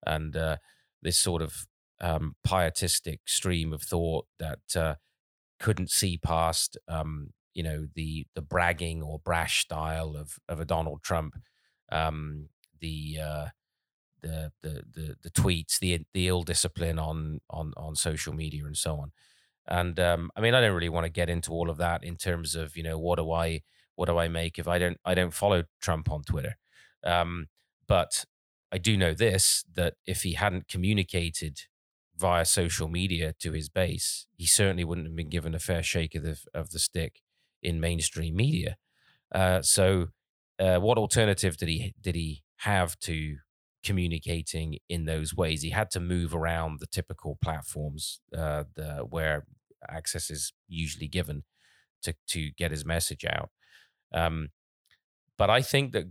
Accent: British